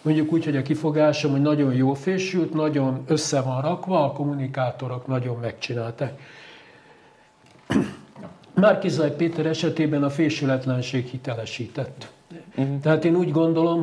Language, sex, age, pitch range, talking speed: Hungarian, male, 60-79, 140-165 Hz, 115 wpm